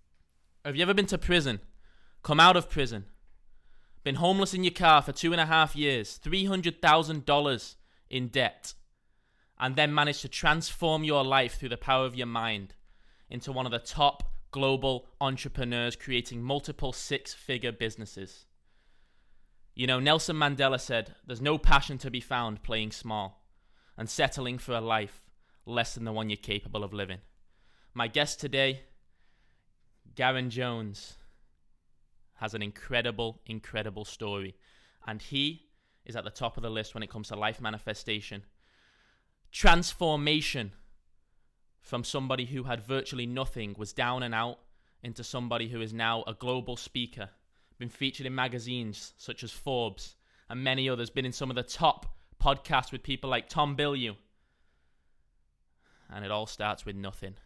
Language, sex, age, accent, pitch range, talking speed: English, male, 20-39, British, 105-135 Hz, 150 wpm